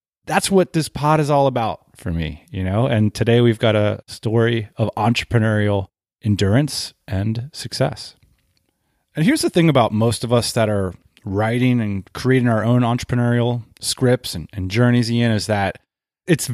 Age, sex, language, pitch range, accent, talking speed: 30-49, male, English, 100-135 Hz, American, 165 wpm